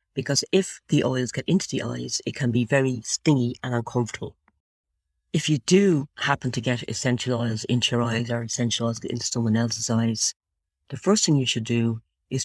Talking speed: 200 wpm